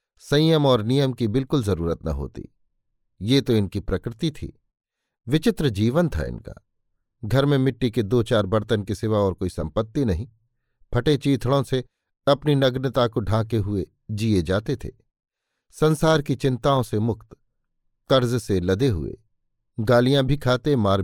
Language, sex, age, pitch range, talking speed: Hindi, male, 50-69, 105-140 Hz, 155 wpm